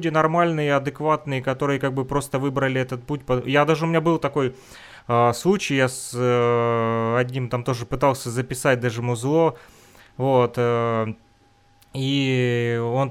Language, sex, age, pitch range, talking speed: Russian, male, 20-39, 120-145 Hz, 140 wpm